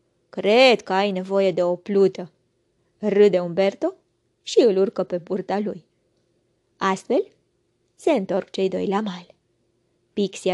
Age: 20-39